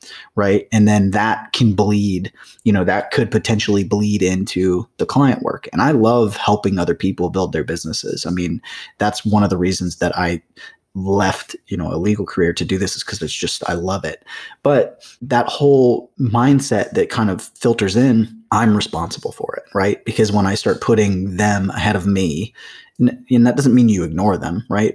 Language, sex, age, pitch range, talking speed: English, male, 30-49, 95-115 Hz, 195 wpm